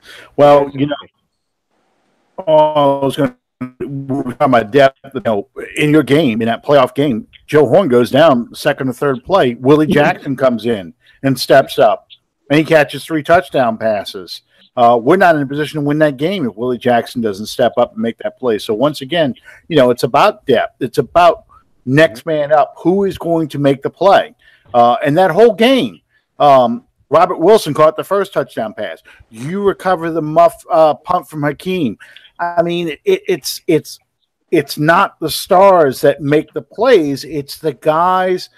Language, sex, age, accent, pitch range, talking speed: English, male, 50-69, American, 135-180 Hz, 180 wpm